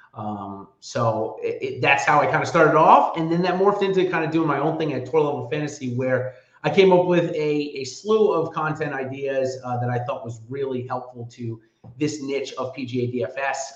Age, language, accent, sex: 30-49, English, American, male